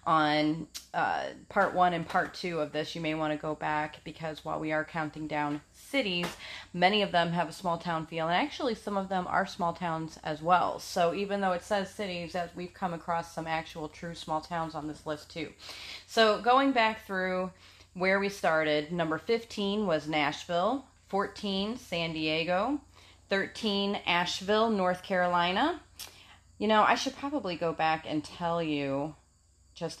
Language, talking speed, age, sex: English, 175 wpm, 30-49, female